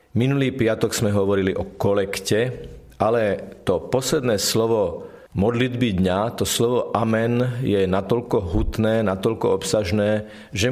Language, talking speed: Slovak, 120 wpm